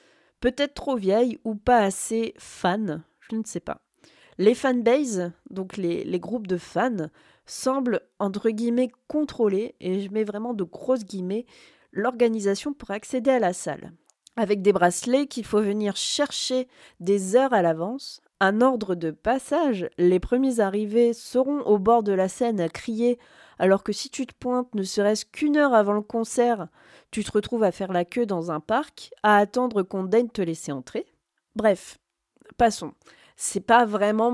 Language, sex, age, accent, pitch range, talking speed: French, female, 20-39, French, 195-245 Hz, 170 wpm